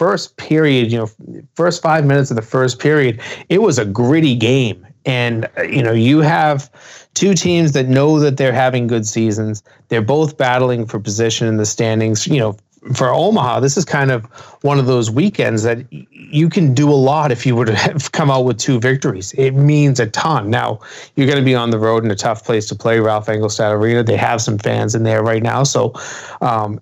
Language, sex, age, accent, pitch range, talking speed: English, male, 30-49, American, 115-145 Hz, 215 wpm